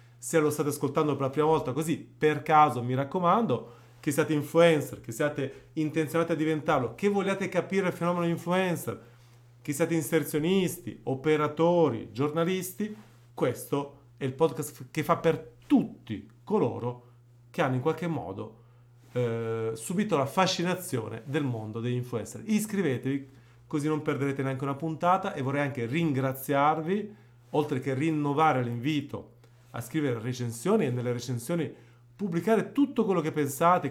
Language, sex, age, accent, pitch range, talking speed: Italian, male, 30-49, native, 125-165 Hz, 140 wpm